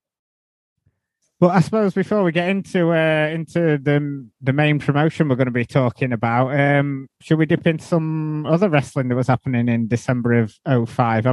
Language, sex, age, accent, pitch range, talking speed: English, male, 20-39, British, 130-160 Hz, 180 wpm